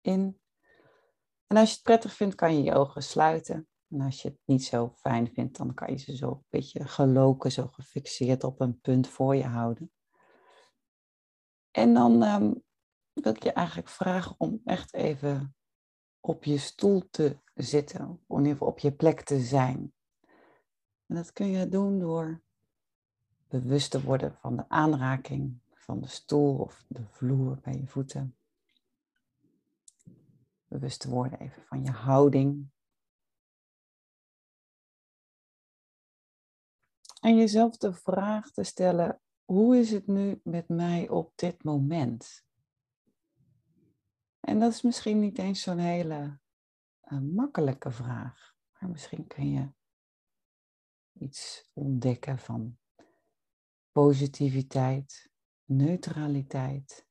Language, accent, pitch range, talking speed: Dutch, Dutch, 130-170 Hz, 130 wpm